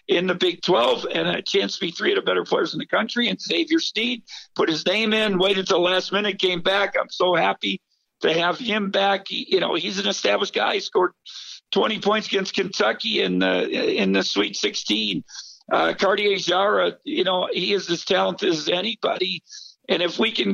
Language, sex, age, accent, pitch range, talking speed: English, male, 50-69, American, 180-260 Hz, 210 wpm